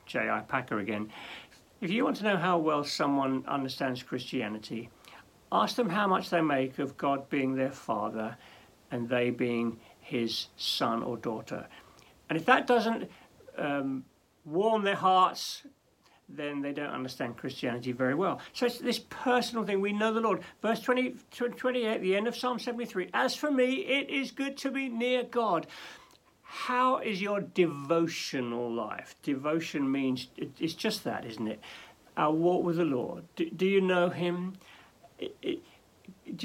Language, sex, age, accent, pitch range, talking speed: English, male, 60-79, British, 145-220 Hz, 155 wpm